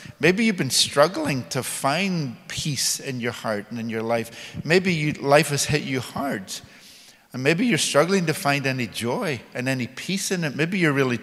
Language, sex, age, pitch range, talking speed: English, male, 50-69, 120-160 Hz, 190 wpm